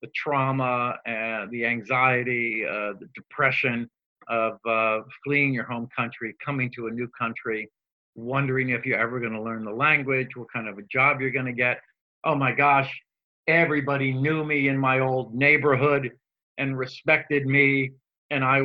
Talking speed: 165 wpm